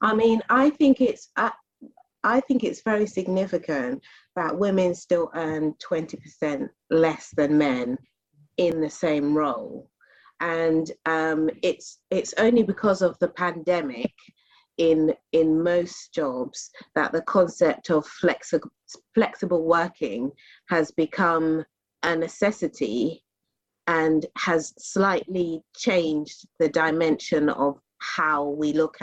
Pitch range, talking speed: 150-180 Hz, 120 wpm